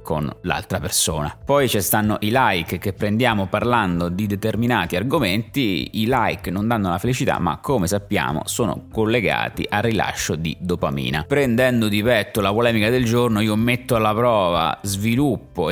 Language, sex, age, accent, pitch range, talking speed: Italian, male, 30-49, native, 95-115 Hz, 155 wpm